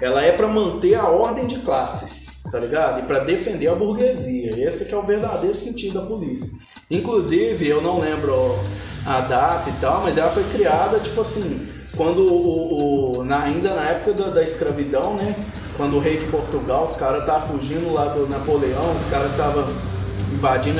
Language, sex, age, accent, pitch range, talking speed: Portuguese, male, 20-39, Brazilian, 125-210 Hz, 175 wpm